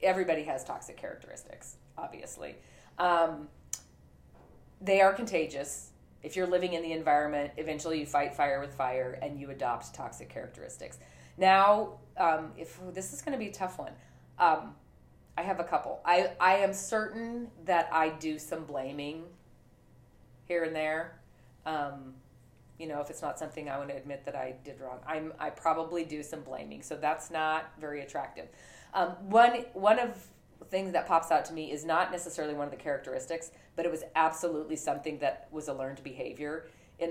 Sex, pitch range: female, 135-165 Hz